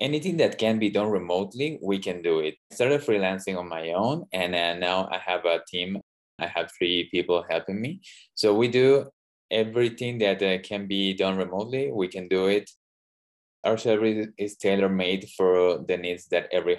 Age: 20-39